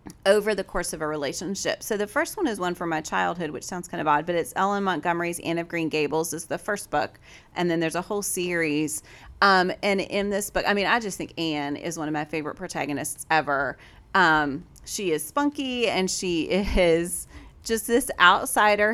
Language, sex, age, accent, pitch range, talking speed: English, female, 30-49, American, 160-205 Hz, 210 wpm